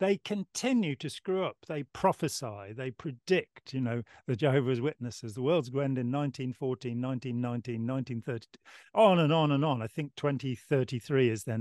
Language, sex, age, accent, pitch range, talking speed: English, male, 40-59, British, 120-155 Hz, 160 wpm